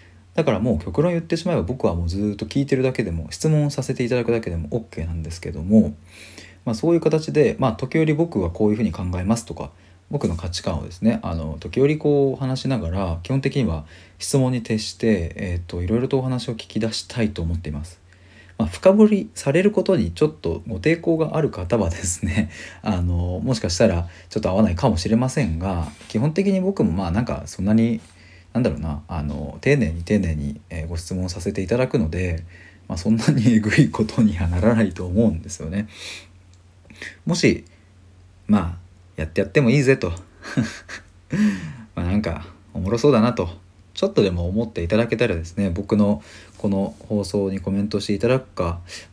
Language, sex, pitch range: Japanese, male, 90-120 Hz